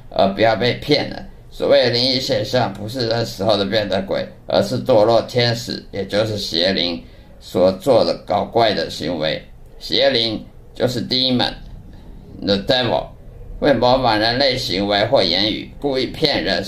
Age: 50-69